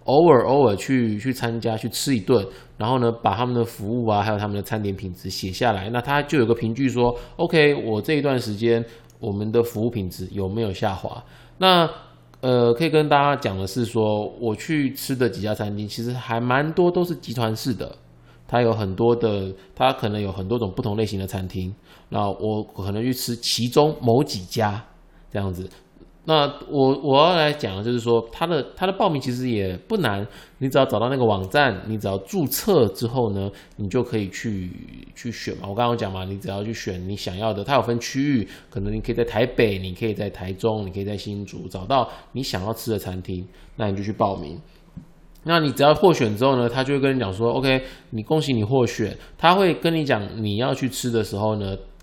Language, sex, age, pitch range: Chinese, male, 20-39, 100-130 Hz